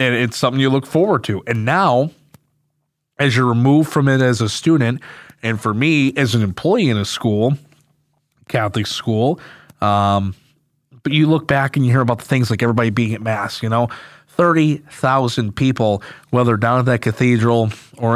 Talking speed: 180 wpm